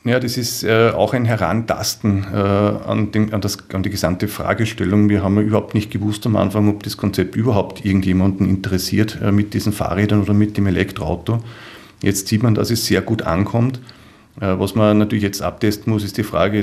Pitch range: 95-105 Hz